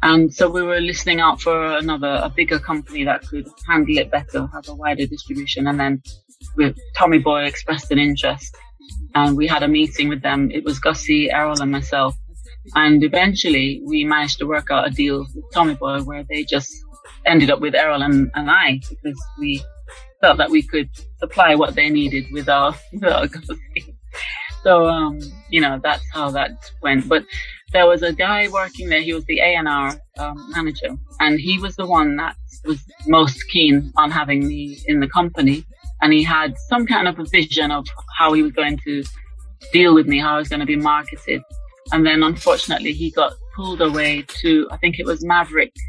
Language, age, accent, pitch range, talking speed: English, 30-49, British, 140-160 Hz, 195 wpm